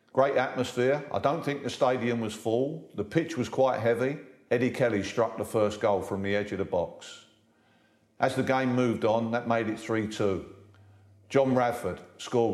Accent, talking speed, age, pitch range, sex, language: British, 180 wpm, 50-69, 100-115 Hz, male, English